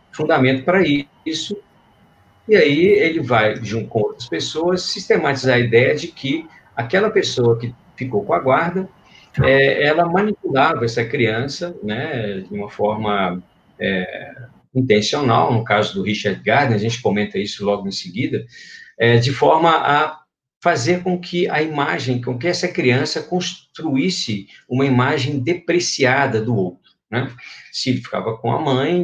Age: 50-69